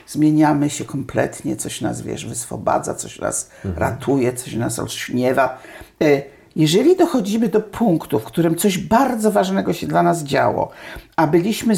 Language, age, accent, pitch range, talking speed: Polish, 50-69, native, 130-185 Hz, 145 wpm